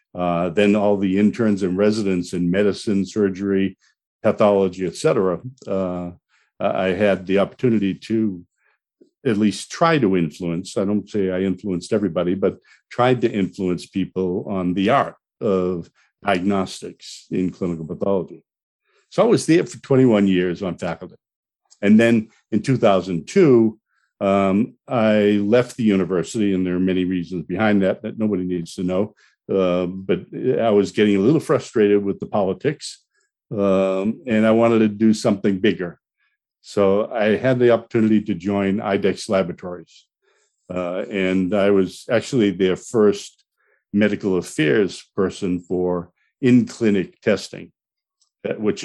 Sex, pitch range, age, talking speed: male, 90-110 Hz, 60-79, 140 wpm